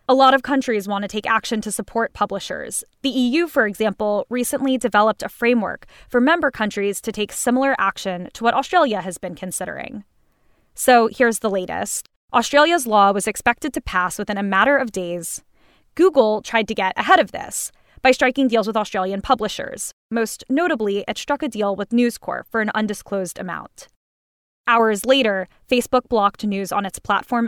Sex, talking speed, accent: female, 175 wpm, American